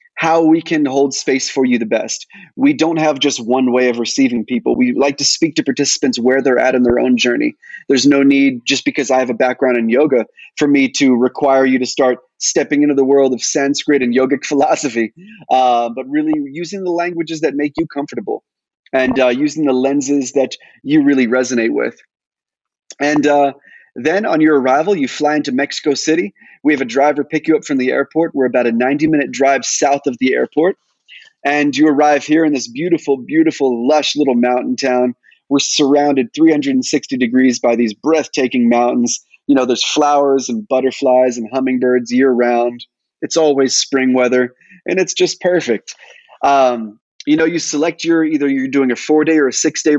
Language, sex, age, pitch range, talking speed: English, male, 30-49, 125-155 Hz, 190 wpm